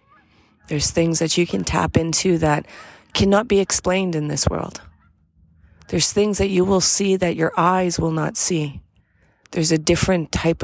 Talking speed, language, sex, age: 170 wpm, English, female, 30-49